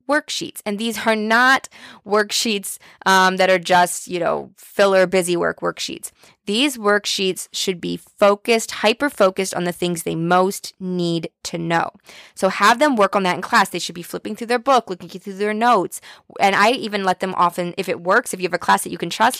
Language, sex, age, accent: English, female, 20-39, American